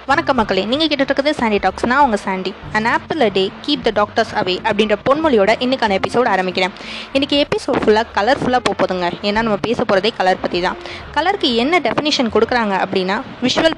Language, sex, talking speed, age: Tamil, female, 170 wpm, 20-39